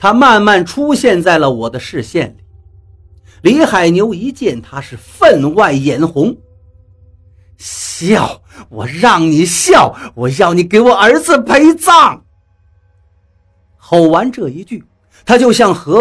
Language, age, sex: Chinese, 50-69, male